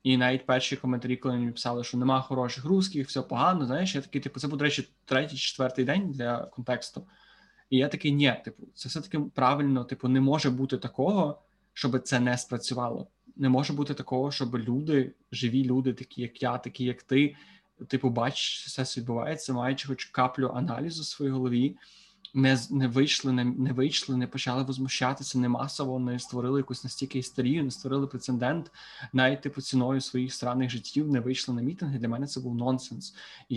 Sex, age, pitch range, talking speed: male, 20-39, 125-140 Hz, 185 wpm